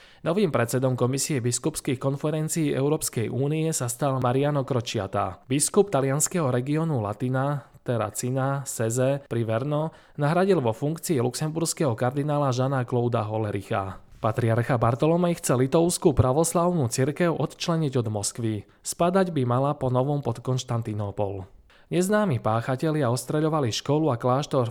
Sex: male